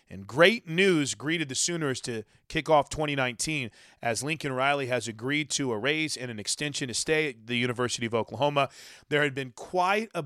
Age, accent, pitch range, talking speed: 30-49, American, 125-155 Hz, 195 wpm